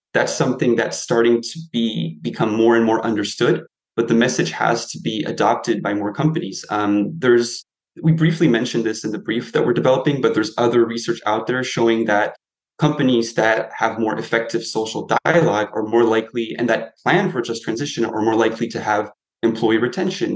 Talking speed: 190 wpm